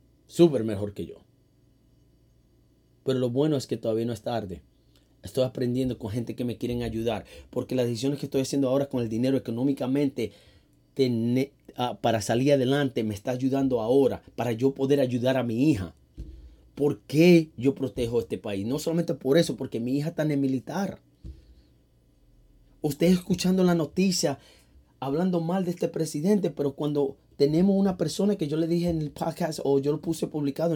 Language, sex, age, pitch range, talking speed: English, male, 30-49, 120-170 Hz, 175 wpm